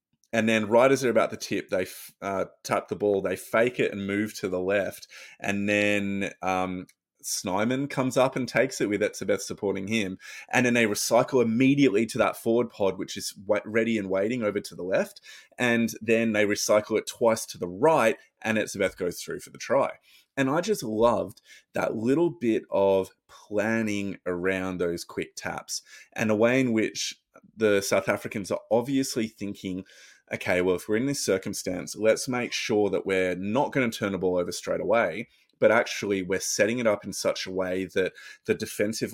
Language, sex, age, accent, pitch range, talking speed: English, male, 20-39, Australian, 95-115 Hz, 195 wpm